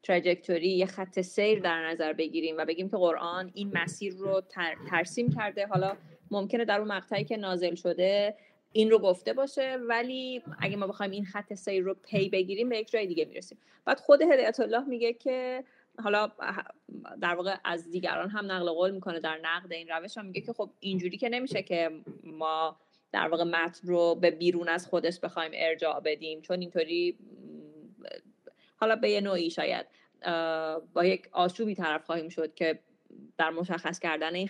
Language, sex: Persian, female